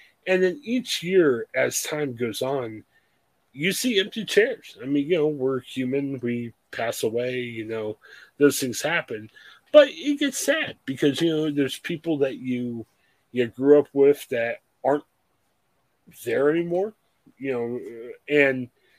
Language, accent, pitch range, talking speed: English, American, 125-170 Hz, 150 wpm